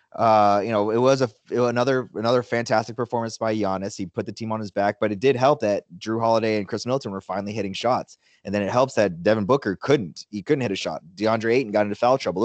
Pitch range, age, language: 100-125 Hz, 20-39, English